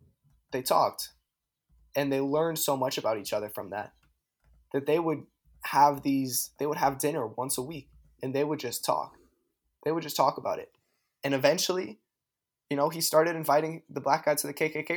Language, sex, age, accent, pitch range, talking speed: English, male, 10-29, American, 125-155 Hz, 195 wpm